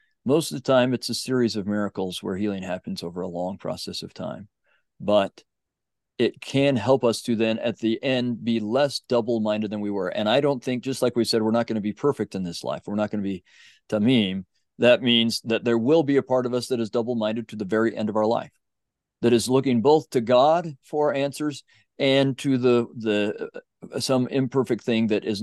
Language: English